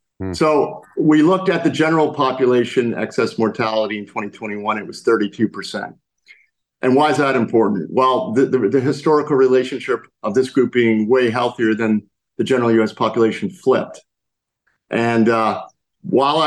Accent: American